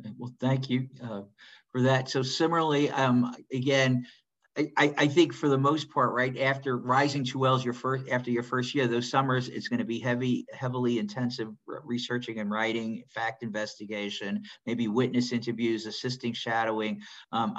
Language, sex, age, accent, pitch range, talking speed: English, male, 50-69, American, 115-130 Hz, 165 wpm